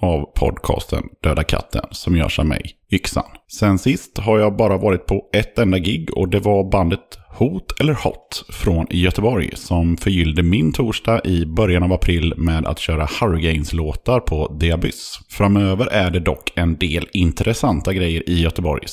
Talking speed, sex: 170 wpm, male